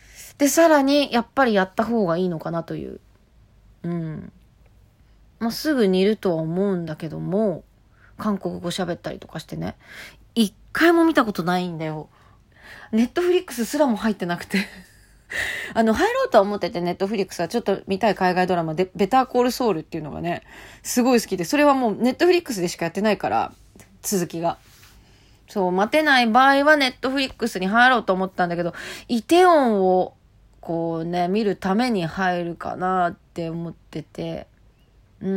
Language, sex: Japanese, female